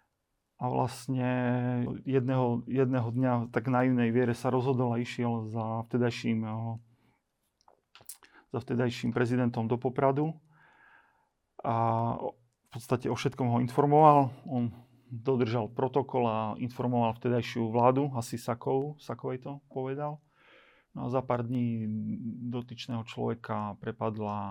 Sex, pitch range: male, 115-130 Hz